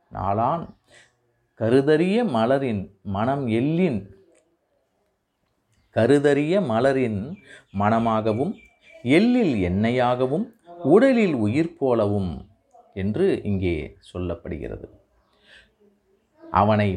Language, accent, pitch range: Tamil, native, 130-180 Hz